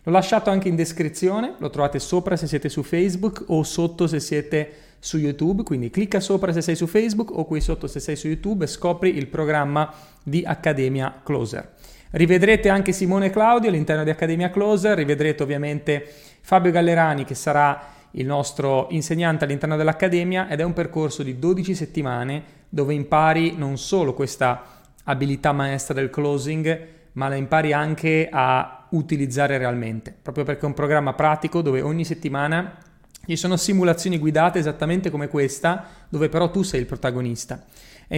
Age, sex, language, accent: 30-49, male, Italian, native